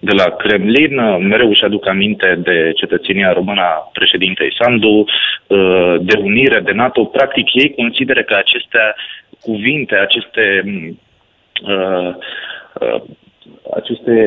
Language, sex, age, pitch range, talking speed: Romanian, male, 30-49, 100-120 Hz, 105 wpm